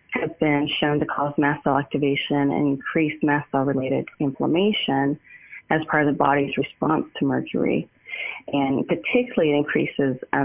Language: English